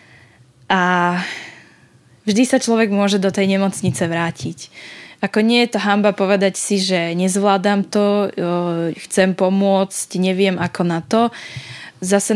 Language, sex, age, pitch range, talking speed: Slovak, female, 10-29, 175-205 Hz, 125 wpm